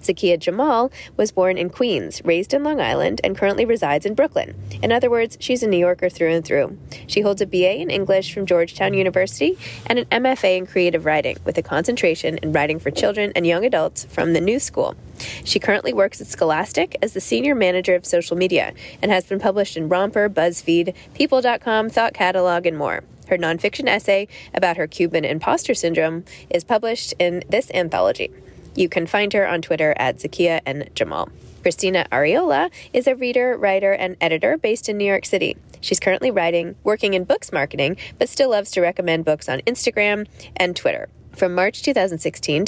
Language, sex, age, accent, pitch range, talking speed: English, female, 20-39, American, 170-215 Hz, 190 wpm